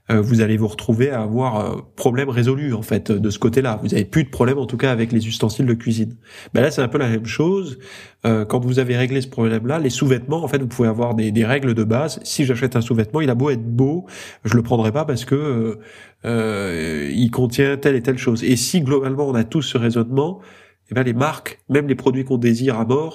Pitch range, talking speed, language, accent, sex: 115-140 Hz, 245 wpm, French, French, male